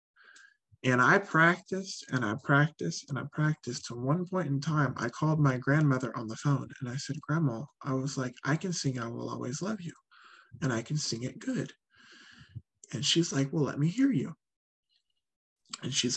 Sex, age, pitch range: male, 20-39, 140-185 Hz